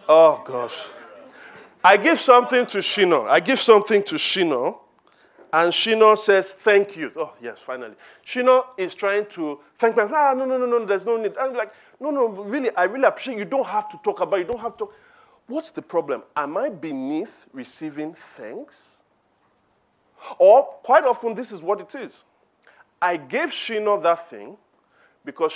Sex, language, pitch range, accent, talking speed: male, English, 160-255 Hz, Nigerian, 180 wpm